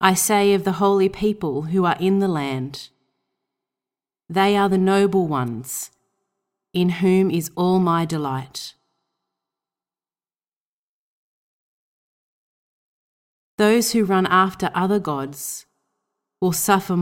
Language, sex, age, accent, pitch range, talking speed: English, female, 30-49, Australian, 150-190 Hz, 105 wpm